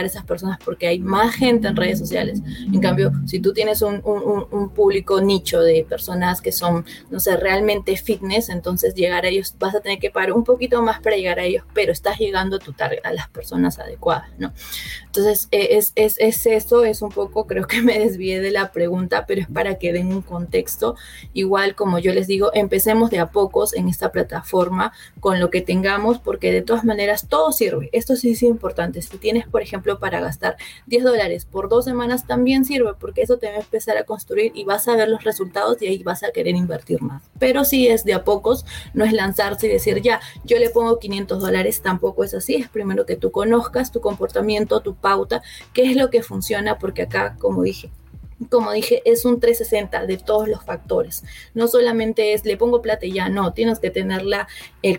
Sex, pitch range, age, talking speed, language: female, 185-235 Hz, 20-39, 215 wpm, Spanish